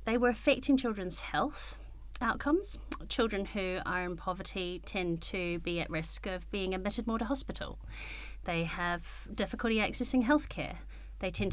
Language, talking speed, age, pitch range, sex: English, 155 wpm, 30-49, 170-225 Hz, female